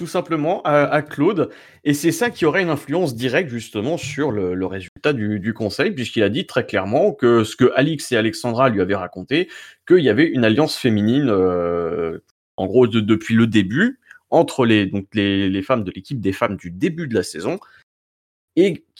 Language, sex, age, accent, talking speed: French, male, 30-49, French, 200 wpm